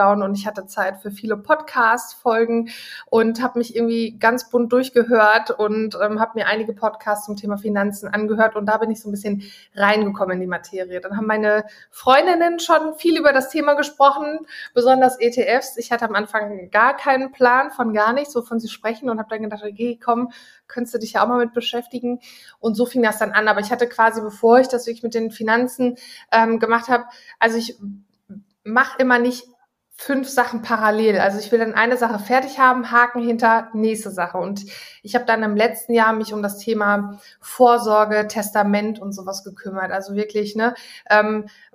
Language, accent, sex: German, German, female